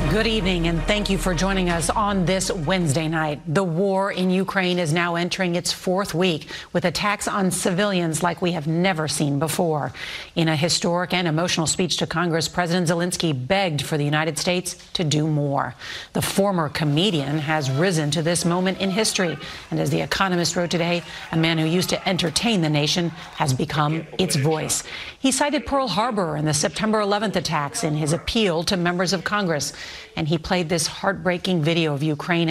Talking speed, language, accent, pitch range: 190 wpm, English, American, 155-185 Hz